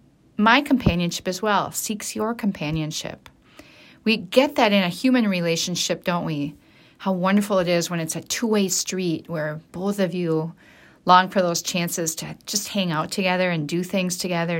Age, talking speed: 40-59, 175 wpm